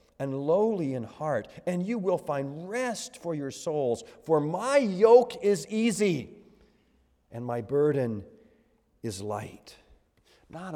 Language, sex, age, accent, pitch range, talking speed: English, male, 50-69, American, 110-160 Hz, 130 wpm